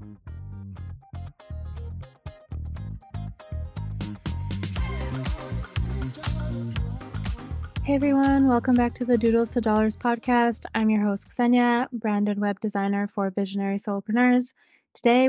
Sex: female